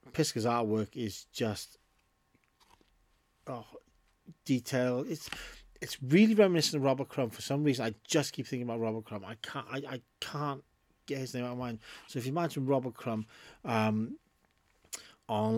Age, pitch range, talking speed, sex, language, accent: 30-49, 110-135 Hz, 160 wpm, male, English, British